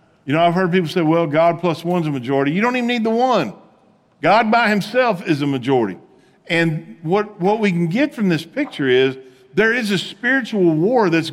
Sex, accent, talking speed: male, American, 210 wpm